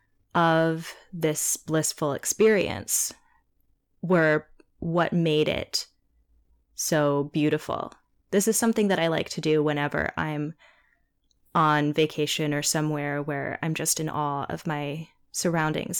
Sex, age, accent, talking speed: female, 10-29, American, 120 wpm